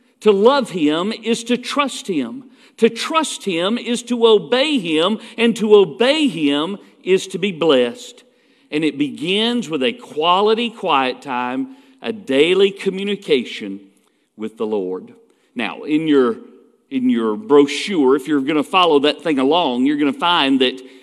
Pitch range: 160-240 Hz